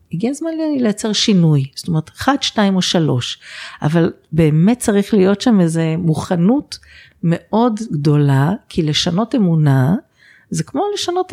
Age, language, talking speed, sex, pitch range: 50-69, Hebrew, 140 wpm, female, 165-230 Hz